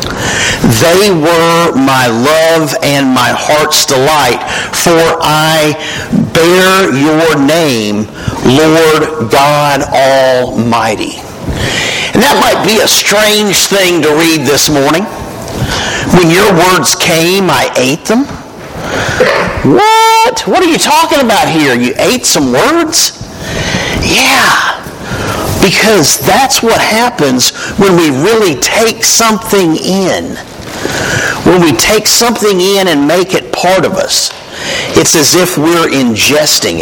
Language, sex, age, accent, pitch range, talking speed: English, male, 50-69, American, 140-195 Hz, 115 wpm